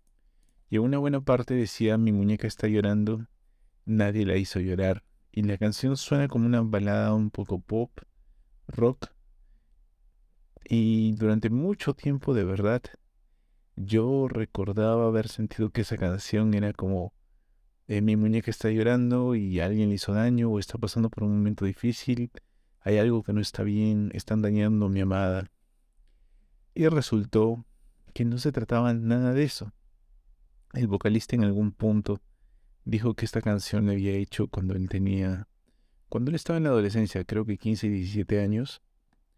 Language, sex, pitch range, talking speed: Spanish, male, 95-115 Hz, 155 wpm